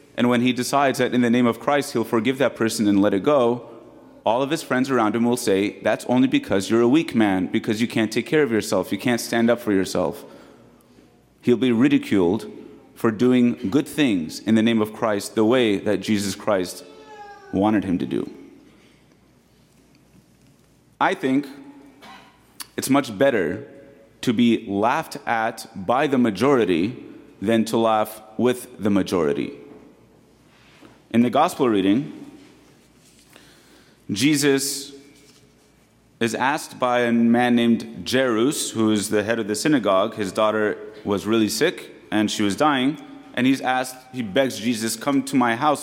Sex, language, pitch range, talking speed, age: male, English, 110-135 Hz, 160 wpm, 30-49